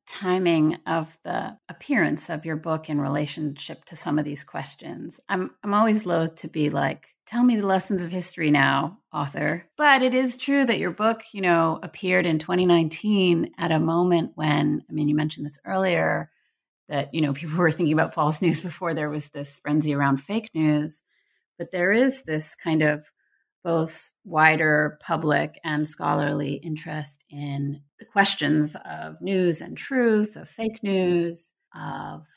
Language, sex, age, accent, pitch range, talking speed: English, female, 30-49, American, 150-185 Hz, 170 wpm